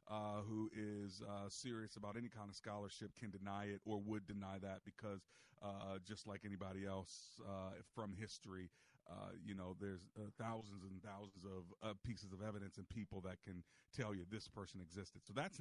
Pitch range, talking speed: 100-115 Hz, 190 wpm